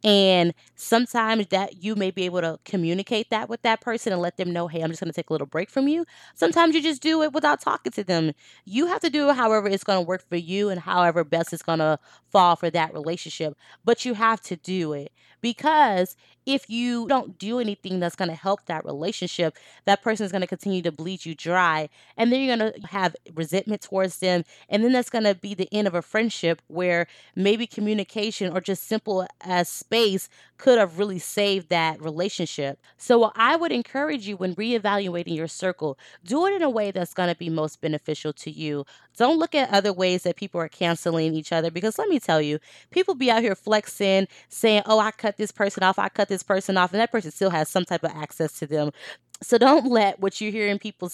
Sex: female